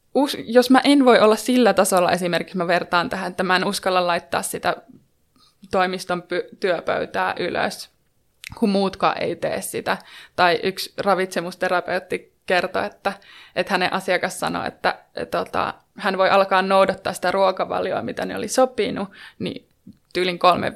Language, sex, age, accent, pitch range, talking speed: Finnish, female, 20-39, native, 180-225 Hz, 145 wpm